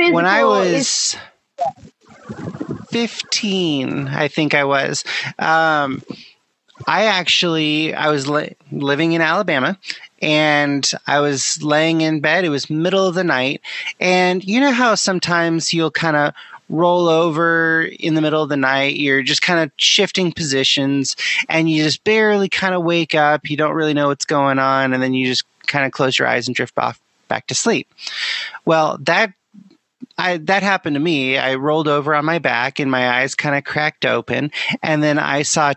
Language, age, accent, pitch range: English, 30-49, American, 140-180 Hz